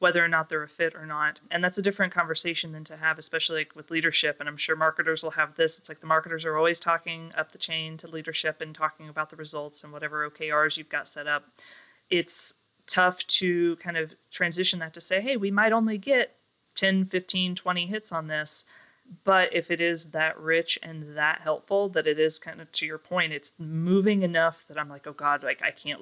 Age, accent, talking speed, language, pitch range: 30-49, American, 230 wpm, English, 155-170 Hz